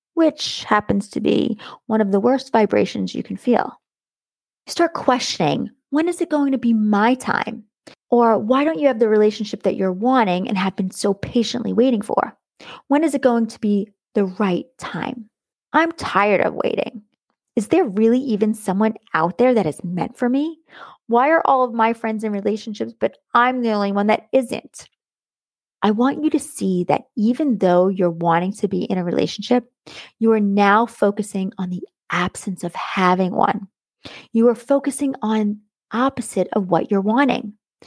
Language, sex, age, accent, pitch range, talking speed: English, female, 30-49, American, 200-255 Hz, 180 wpm